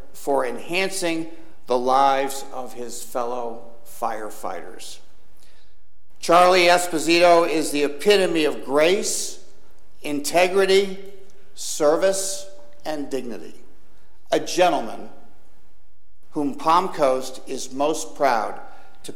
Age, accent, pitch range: 60-79, American, 120-165 Hz